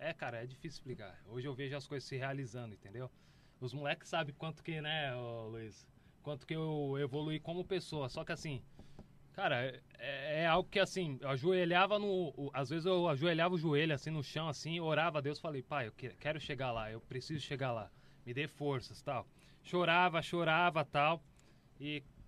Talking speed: 190 wpm